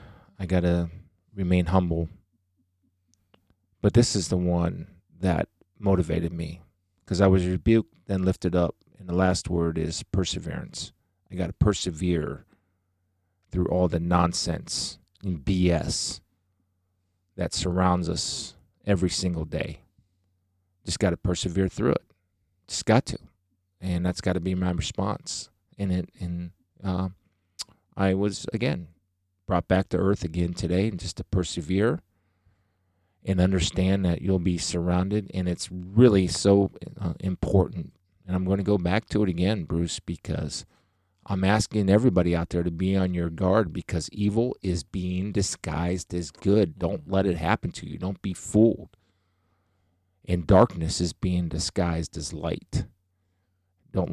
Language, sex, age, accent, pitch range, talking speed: English, male, 30-49, American, 90-95 Hz, 140 wpm